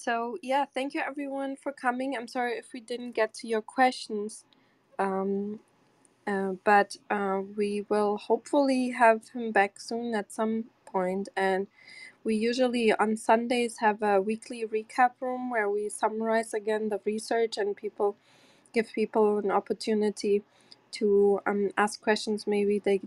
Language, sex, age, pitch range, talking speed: English, female, 20-39, 195-230 Hz, 150 wpm